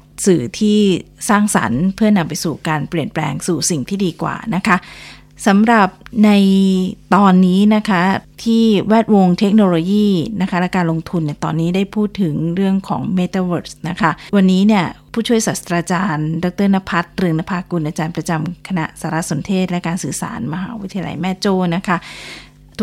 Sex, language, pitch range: female, Thai, 165-200 Hz